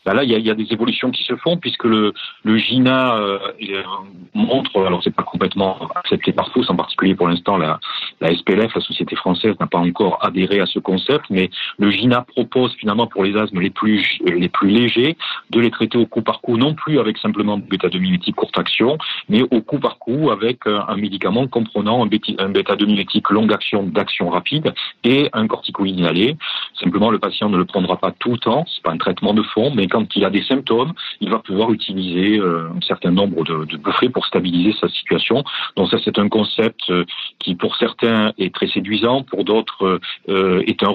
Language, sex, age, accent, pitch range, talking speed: French, male, 40-59, French, 95-115 Hz, 205 wpm